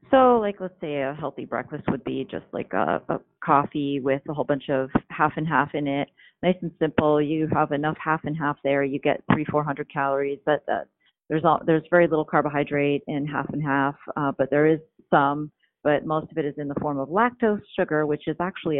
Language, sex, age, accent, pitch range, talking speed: English, female, 40-59, American, 140-160 Hz, 225 wpm